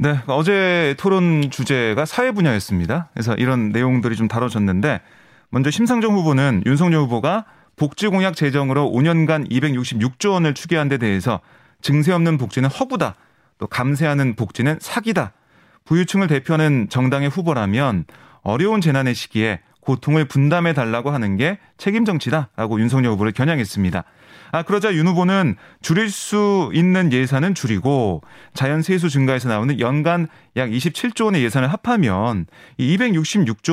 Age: 30-49